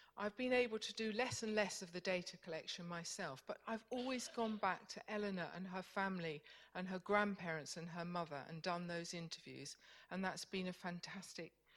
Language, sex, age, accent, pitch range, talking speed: English, female, 50-69, British, 170-215 Hz, 195 wpm